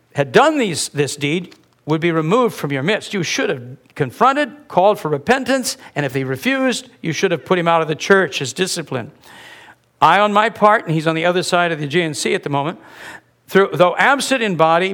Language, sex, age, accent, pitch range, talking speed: English, male, 60-79, American, 155-215 Hz, 210 wpm